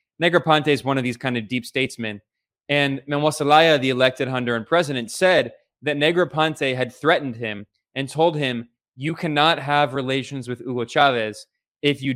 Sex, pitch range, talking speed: male, 120-145 Hz, 170 wpm